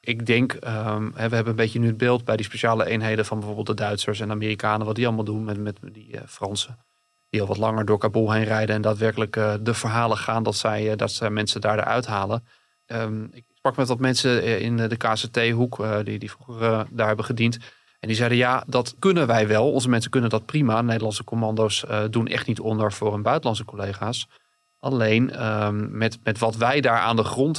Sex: male